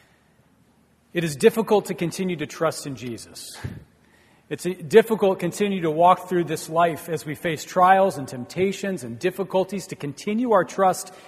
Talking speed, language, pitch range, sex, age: 160 wpm, English, 150-190 Hz, male, 40-59